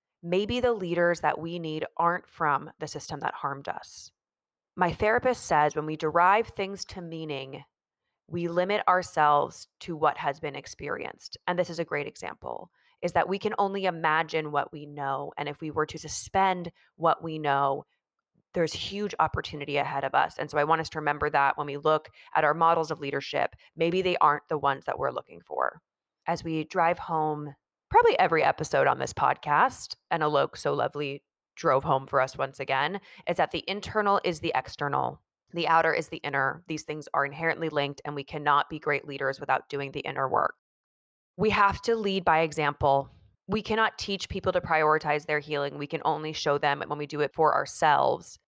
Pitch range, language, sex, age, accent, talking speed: 145-175 Hz, English, female, 20-39, American, 195 wpm